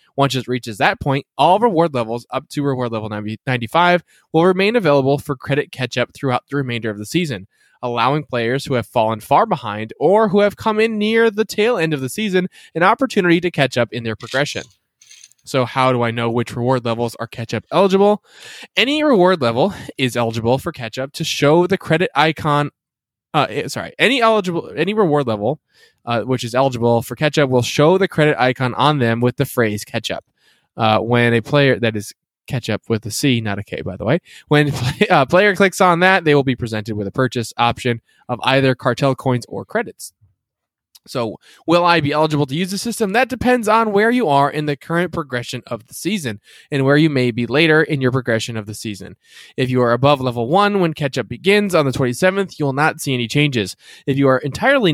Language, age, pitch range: English, 20-39, 120-160 Hz